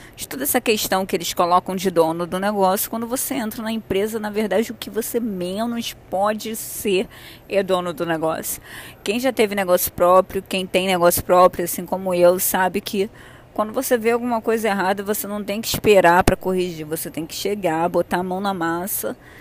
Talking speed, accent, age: 200 wpm, Brazilian, 20-39